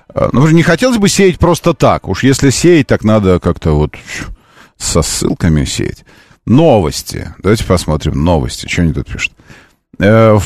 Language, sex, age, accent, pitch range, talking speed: Russian, male, 40-59, native, 90-140 Hz, 160 wpm